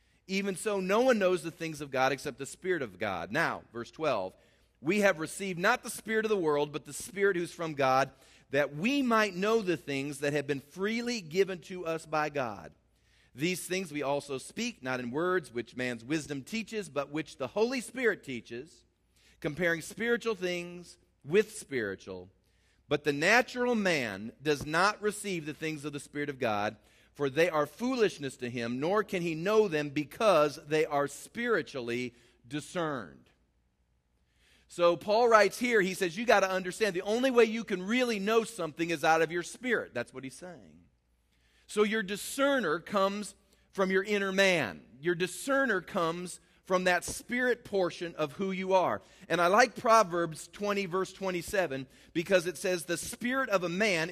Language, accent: English, American